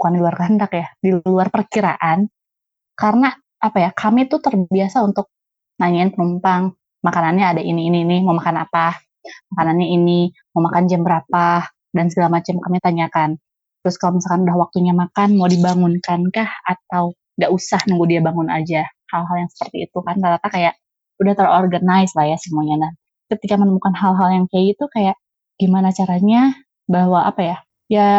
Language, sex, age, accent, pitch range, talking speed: Indonesian, female, 20-39, native, 175-215 Hz, 165 wpm